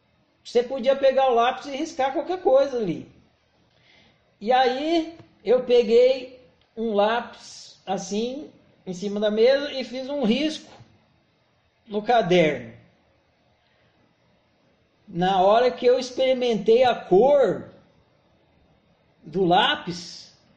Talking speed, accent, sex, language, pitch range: 105 wpm, Brazilian, male, Portuguese, 235-320 Hz